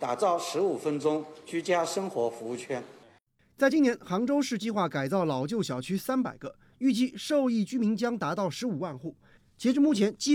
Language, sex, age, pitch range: Chinese, male, 30-49, 150-245 Hz